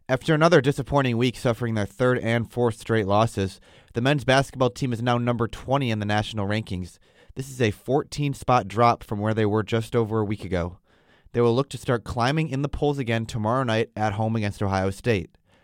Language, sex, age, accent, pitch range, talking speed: English, male, 20-39, American, 105-125 Hz, 205 wpm